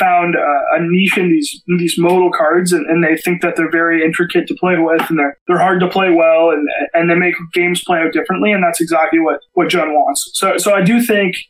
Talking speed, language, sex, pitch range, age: 250 wpm, English, male, 160-205 Hz, 20-39